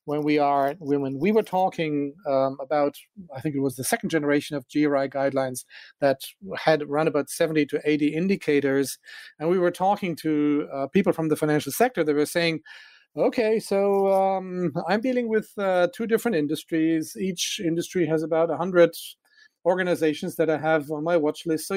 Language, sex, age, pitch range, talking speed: English, male, 40-59, 145-180 Hz, 180 wpm